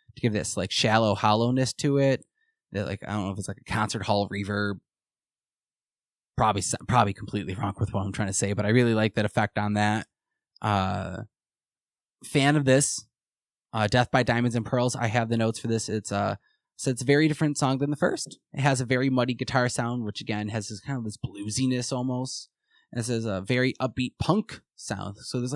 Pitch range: 105-125 Hz